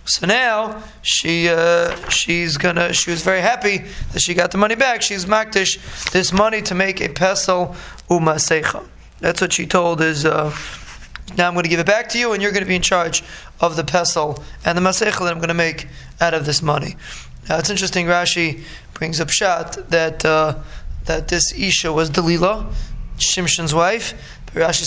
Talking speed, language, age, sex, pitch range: 195 wpm, English, 20-39, male, 160-190 Hz